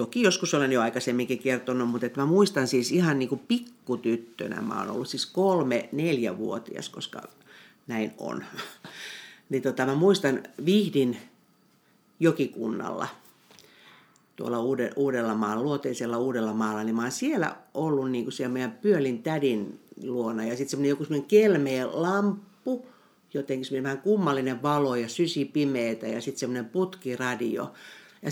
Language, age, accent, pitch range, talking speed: Finnish, 60-79, native, 125-185 Hz, 135 wpm